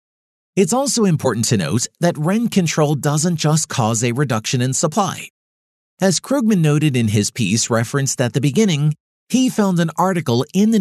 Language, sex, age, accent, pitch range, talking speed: English, male, 40-59, American, 115-175 Hz, 170 wpm